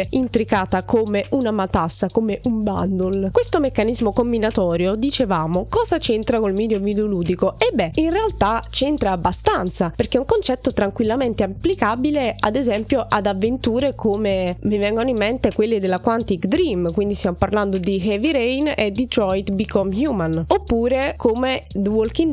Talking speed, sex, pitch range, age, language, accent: 150 wpm, female, 195-255 Hz, 20-39, Italian, native